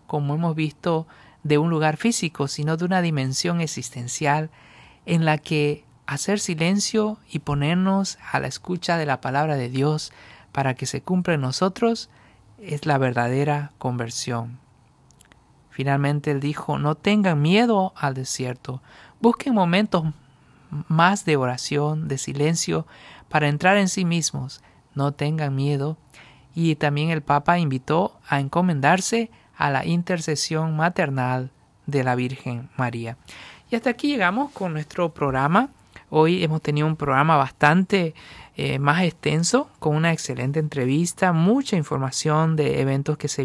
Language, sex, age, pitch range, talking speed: Spanish, male, 50-69, 135-175 Hz, 140 wpm